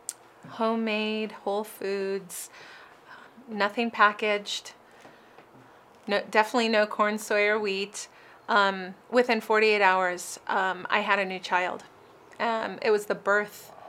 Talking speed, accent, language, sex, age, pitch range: 115 wpm, American, English, female, 30-49, 195-225 Hz